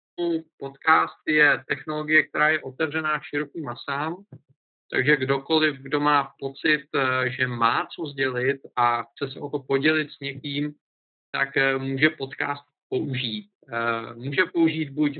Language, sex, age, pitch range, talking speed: Czech, male, 50-69, 130-150 Hz, 125 wpm